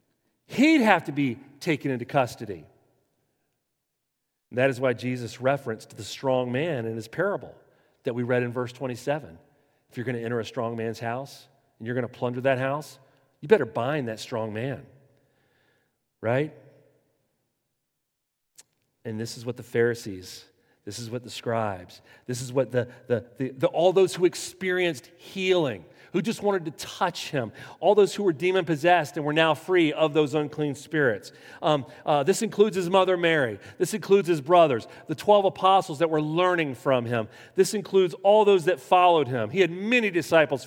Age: 40-59